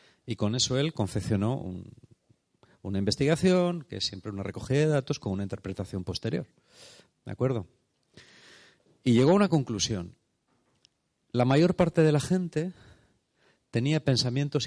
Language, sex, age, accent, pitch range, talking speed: Spanish, male, 40-59, Spanish, 105-145 Hz, 135 wpm